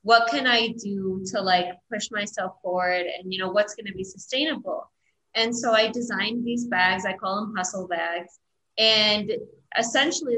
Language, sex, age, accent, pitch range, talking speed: English, female, 20-39, American, 200-235 Hz, 175 wpm